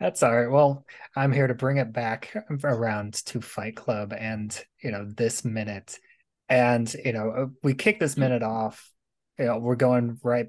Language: English